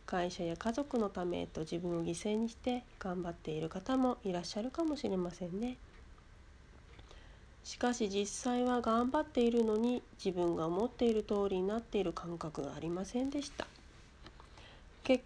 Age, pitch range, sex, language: 40-59, 195-255 Hz, female, Japanese